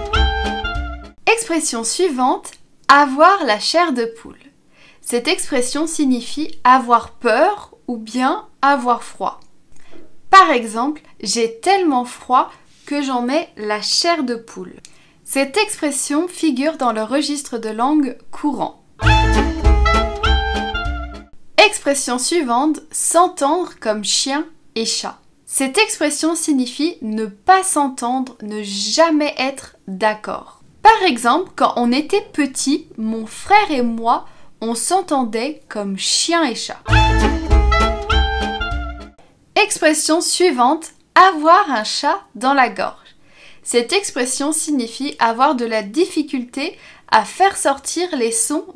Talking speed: 110 wpm